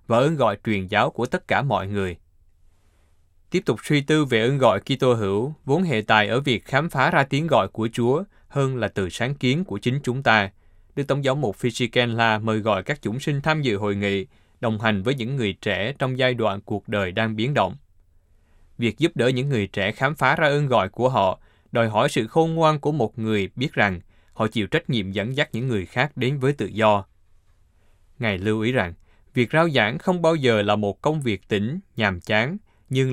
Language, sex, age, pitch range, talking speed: Vietnamese, male, 20-39, 100-135 Hz, 220 wpm